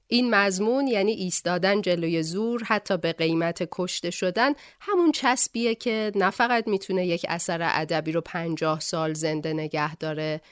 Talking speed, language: 150 wpm, Persian